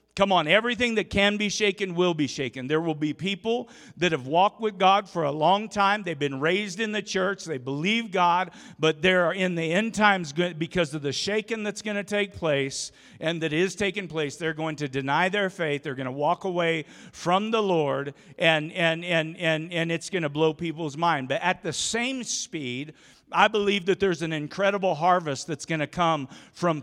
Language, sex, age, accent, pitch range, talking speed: English, male, 50-69, American, 155-195 Hz, 210 wpm